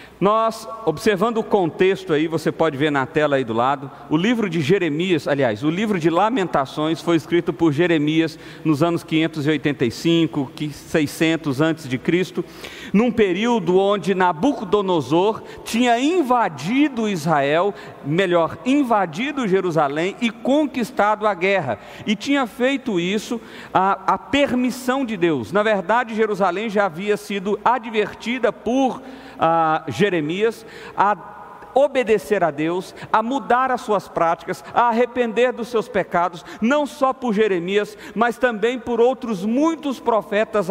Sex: male